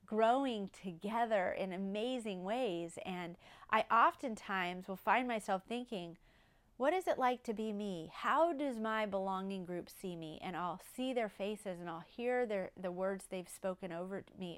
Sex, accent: female, American